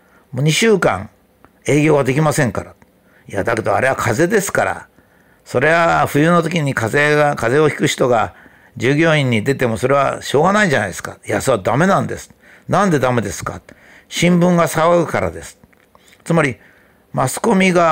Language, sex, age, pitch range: Japanese, male, 60-79, 125-175 Hz